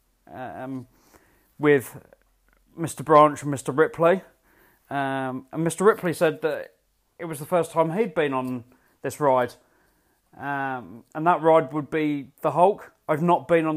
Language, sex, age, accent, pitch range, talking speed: English, male, 20-39, British, 135-155 Hz, 155 wpm